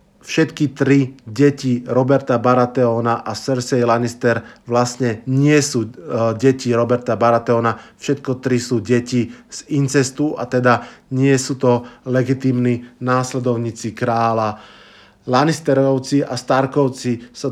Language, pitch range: Slovak, 120-135 Hz